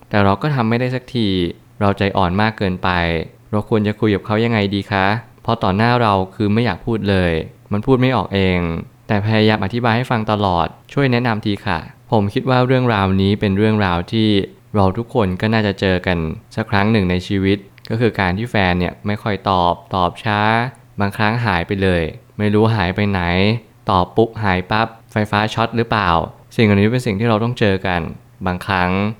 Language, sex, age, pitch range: Thai, male, 20-39, 95-115 Hz